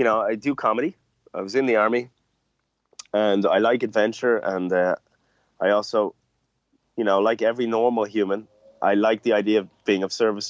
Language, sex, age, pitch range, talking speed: English, male, 30-49, 100-120 Hz, 185 wpm